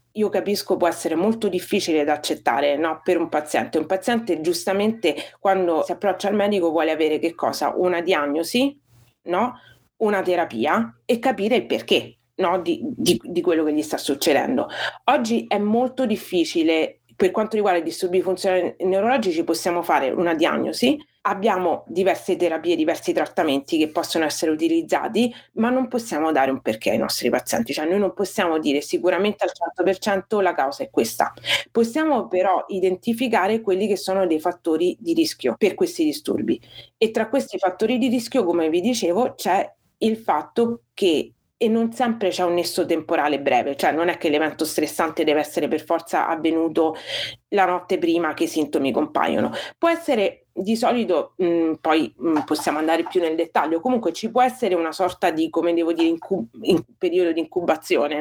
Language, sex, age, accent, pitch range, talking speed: Italian, female, 30-49, native, 165-220 Hz, 170 wpm